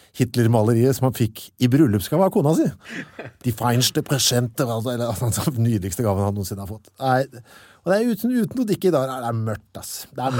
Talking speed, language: 230 wpm, English